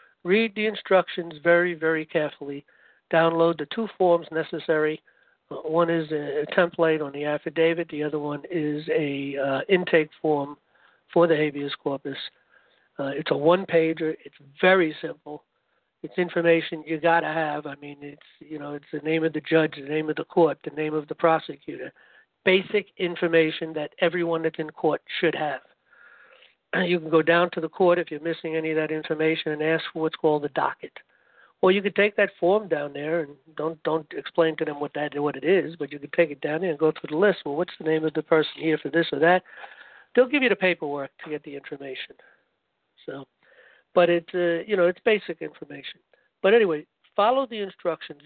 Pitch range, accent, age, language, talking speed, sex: 150-170 Hz, American, 60-79, English, 200 wpm, male